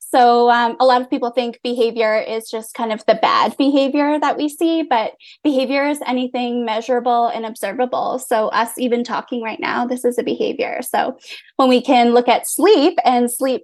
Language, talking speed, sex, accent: English, 195 wpm, female, American